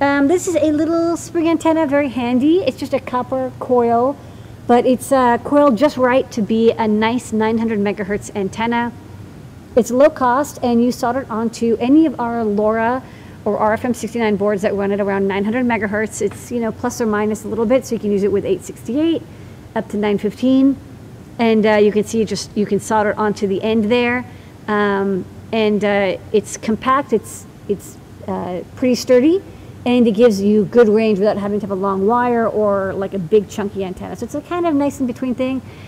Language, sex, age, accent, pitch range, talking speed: English, female, 40-59, American, 205-255 Hz, 200 wpm